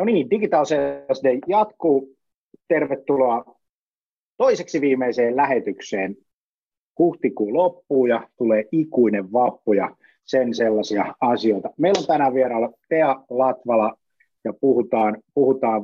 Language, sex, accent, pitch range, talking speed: Finnish, male, native, 110-150 Hz, 100 wpm